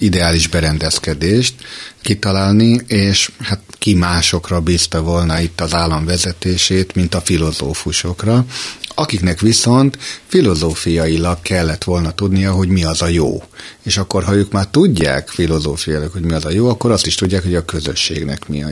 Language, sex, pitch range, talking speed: Hungarian, male, 80-100 Hz, 155 wpm